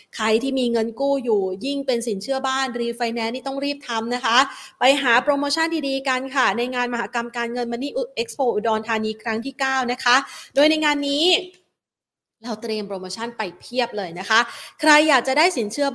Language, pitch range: Thai, 215-275 Hz